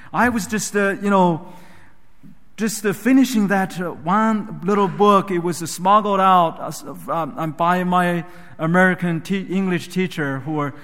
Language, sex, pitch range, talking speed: English, male, 150-190 Hz, 160 wpm